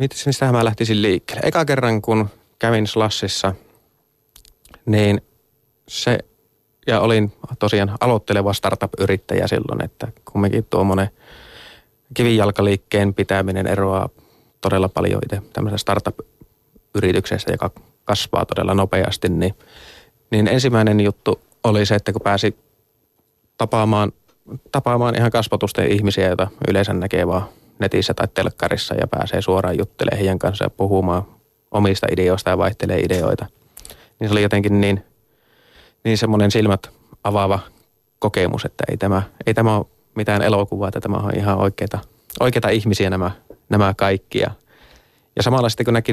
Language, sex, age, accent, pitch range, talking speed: Finnish, male, 30-49, native, 95-115 Hz, 130 wpm